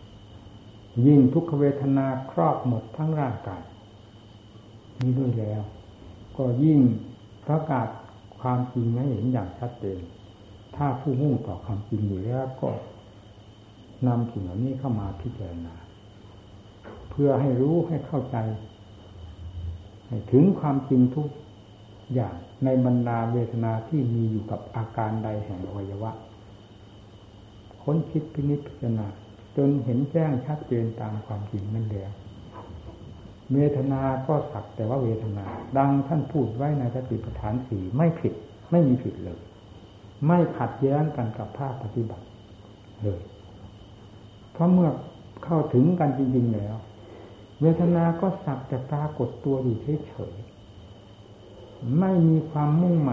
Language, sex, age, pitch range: Thai, male, 60-79, 105-135 Hz